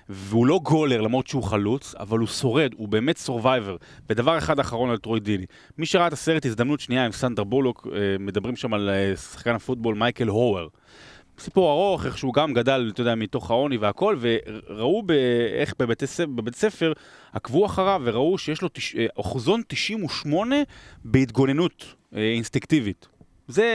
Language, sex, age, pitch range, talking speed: Hebrew, male, 30-49, 115-155 Hz, 145 wpm